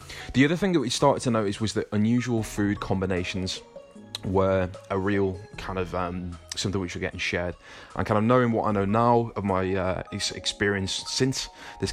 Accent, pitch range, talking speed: British, 90-105 Hz, 190 wpm